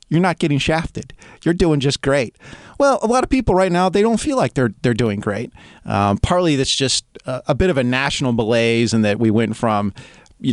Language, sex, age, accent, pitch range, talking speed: English, male, 40-59, American, 110-155 Hz, 230 wpm